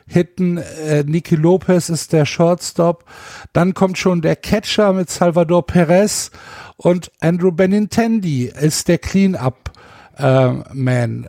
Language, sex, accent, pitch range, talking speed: German, male, German, 145-180 Hz, 105 wpm